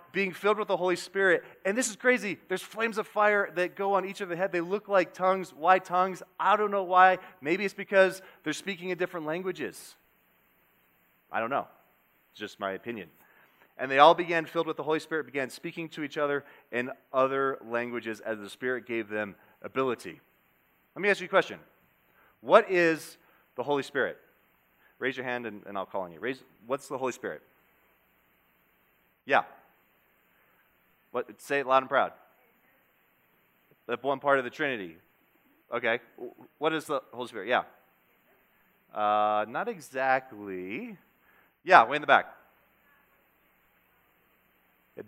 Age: 30-49